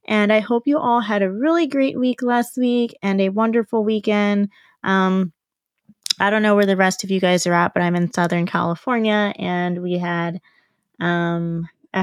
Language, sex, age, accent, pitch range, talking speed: English, female, 20-39, American, 165-205 Hz, 190 wpm